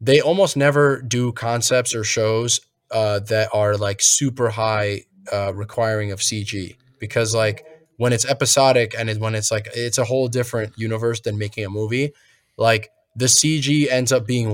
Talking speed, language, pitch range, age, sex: 170 wpm, English, 110-135 Hz, 20-39, male